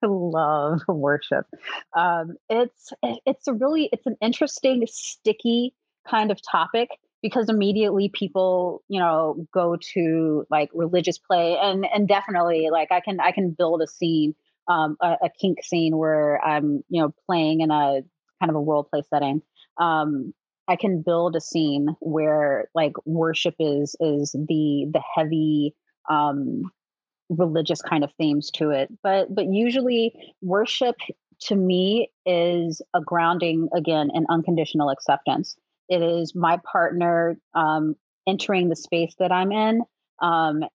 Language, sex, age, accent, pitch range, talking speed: English, female, 30-49, American, 160-190 Hz, 145 wpm